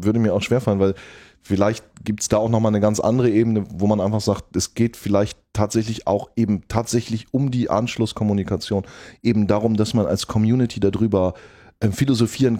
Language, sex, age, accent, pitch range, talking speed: German, male, 20-39, German, 95-115 Hz, 175 wpm